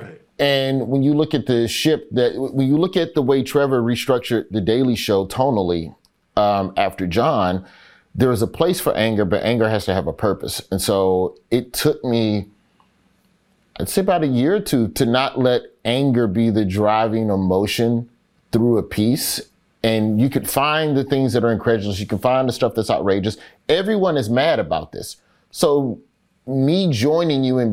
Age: 30-49